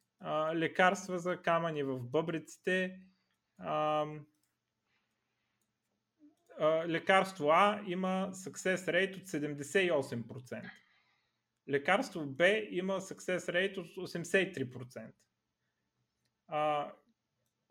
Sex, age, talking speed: male, 30-49, 65 wpm